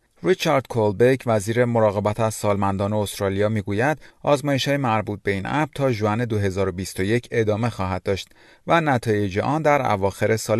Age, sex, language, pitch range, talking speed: 40-59, male, Persian, 100-130 Hz, 135 wpm